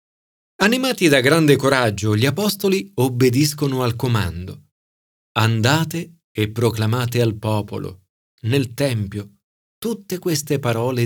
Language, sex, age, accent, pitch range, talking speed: Italian, male, 40-59, native, 110-155 Hz, 105 wpm